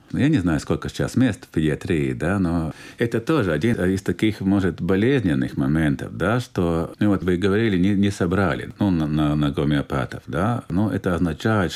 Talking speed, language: 180 wpm, Russian